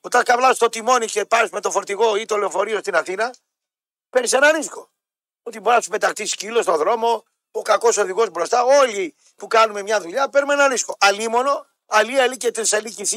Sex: male